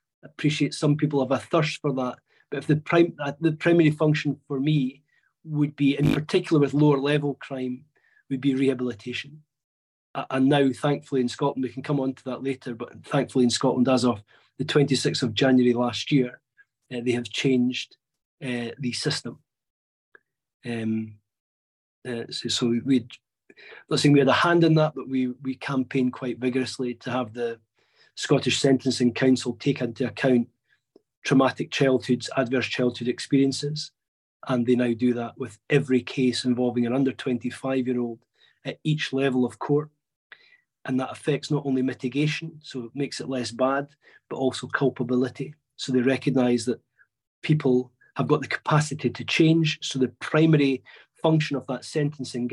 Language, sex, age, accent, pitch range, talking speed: English, male, 30-49, British, 125-145 Hz, 160 wpm